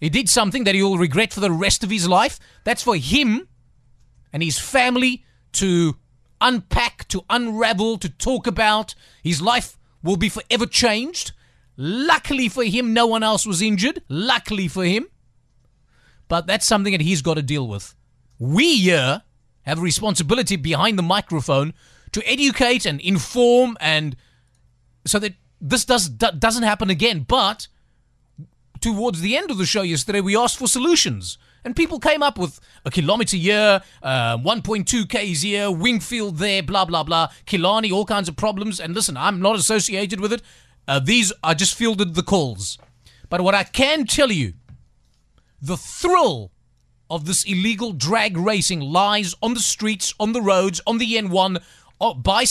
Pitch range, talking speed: 160-225 Hz, 165 wpm